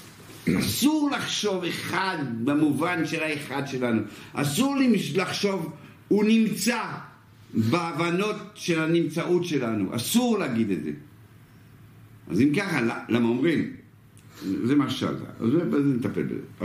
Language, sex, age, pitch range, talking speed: Hebrew, male, 60-79, 105-145 Hz, 105 wpm